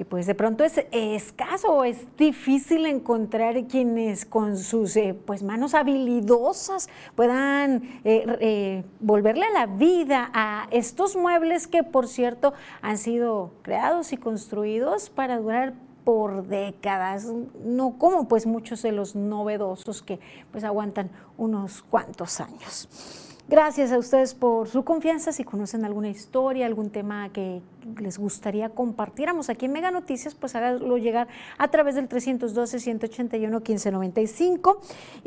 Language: Spanish